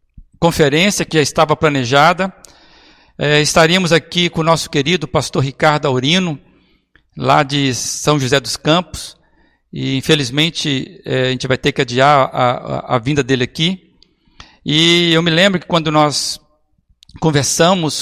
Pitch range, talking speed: 145-180 Hz, 140 wpm